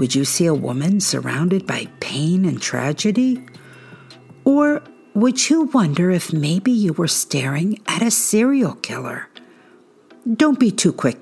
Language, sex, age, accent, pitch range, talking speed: English, female, 50-69, American, 145-215 Hz, 145 wpm